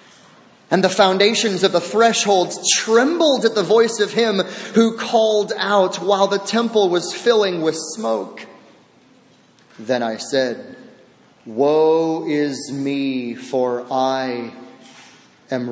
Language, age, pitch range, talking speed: English, 30-49, 165-230 Hz, 120 wpm